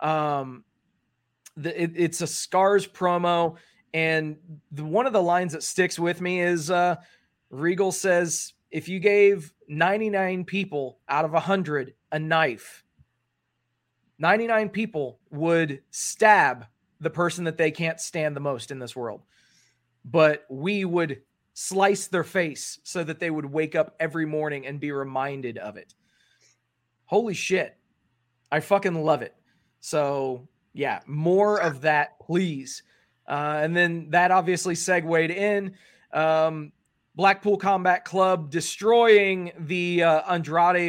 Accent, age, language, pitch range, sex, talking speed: American, 30-49, English, 155-185 Hz, male, 130 wpm